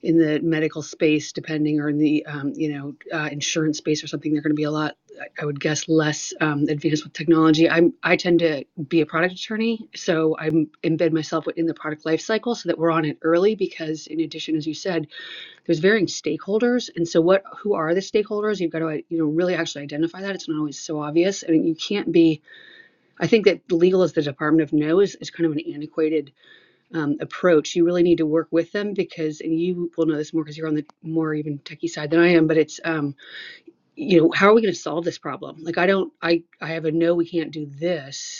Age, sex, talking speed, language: 30-49, female, 240 wpm, English